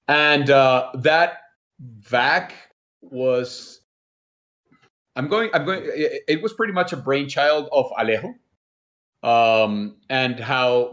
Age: 30-49